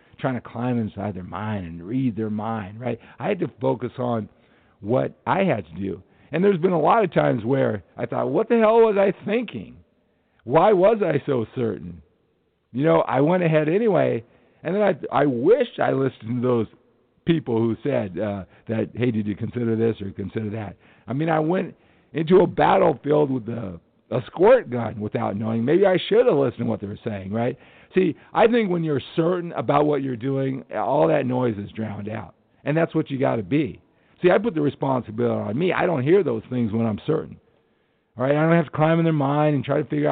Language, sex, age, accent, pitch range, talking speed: English, male, 50-69, American, 110-150 Hz, 220 wpm